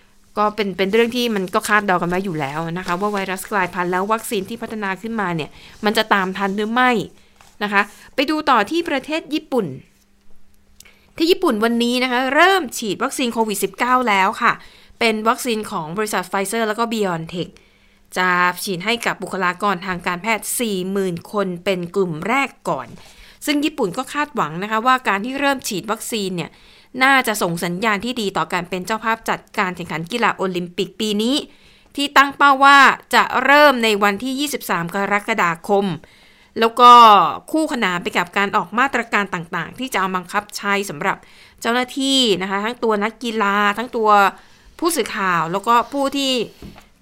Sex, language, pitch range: female, Thai, 185-240 Hz